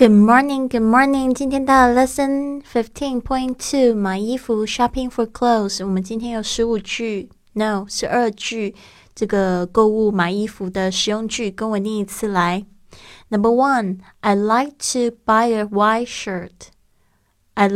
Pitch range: 195-230 Hz